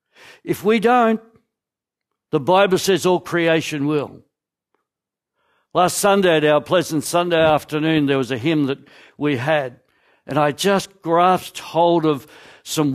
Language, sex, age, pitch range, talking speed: English, male, 60-79, 150-210 Hz, 140 wpm